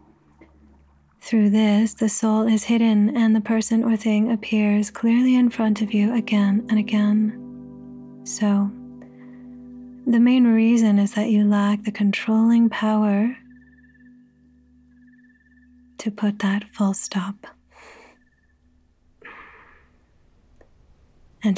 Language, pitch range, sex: English, 175-220 Hz, female